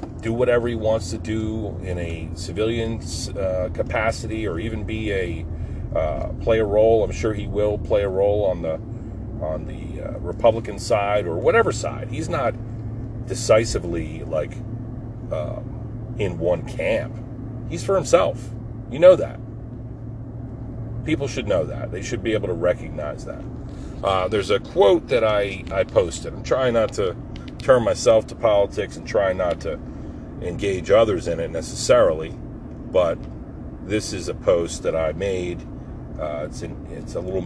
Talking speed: 160 wpm